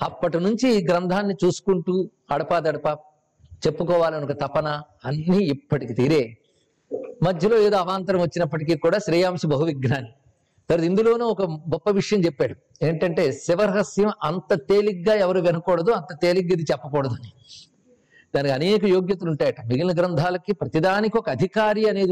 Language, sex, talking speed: Telugu, male, 120 wpm